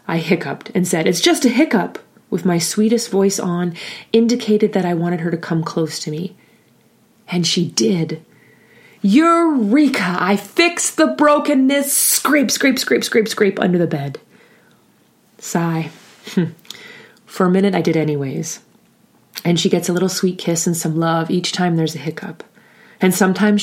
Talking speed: 155 wpm